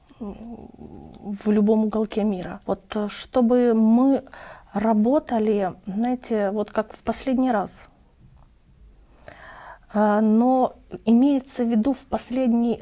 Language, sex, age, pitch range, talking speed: Russian, female, 30-49, 210-255 Hz, 95 wpm